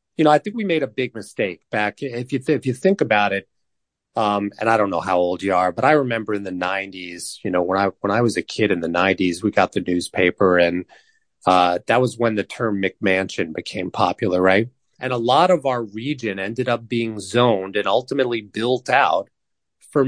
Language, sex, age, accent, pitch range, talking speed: English, male, 30-49, American, 100-140 Hz, 225 wpm